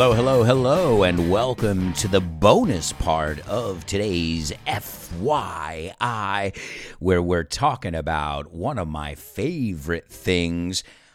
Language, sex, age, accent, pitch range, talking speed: English, male, 50-69, American, 80-125 Hz, 115 wpm